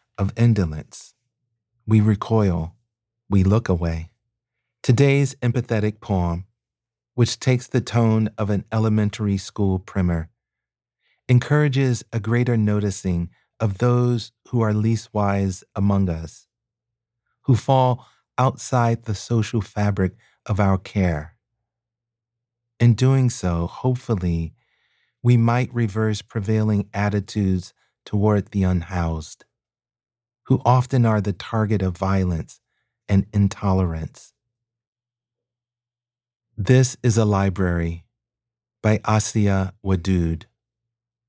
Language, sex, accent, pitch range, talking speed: English, male, American, 100-120 Hz, 100 wpm